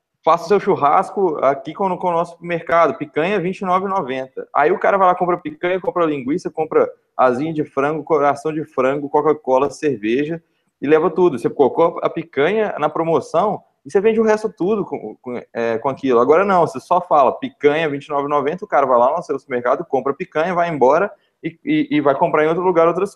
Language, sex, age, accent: Portuguese, male, 20-39, Brazilian